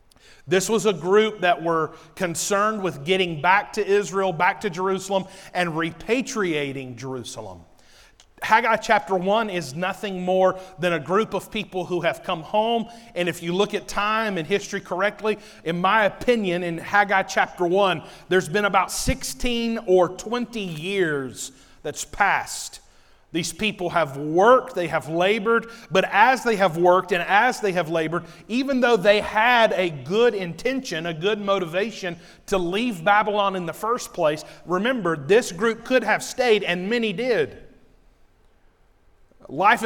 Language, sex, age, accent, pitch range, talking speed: English, male, 40-59, American, 175-215 Hz, 155 wpm